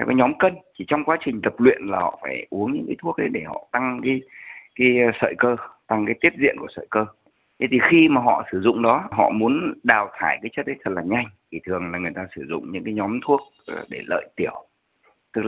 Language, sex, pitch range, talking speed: Vietnamese, male, 105-140 Hz, 250 wpm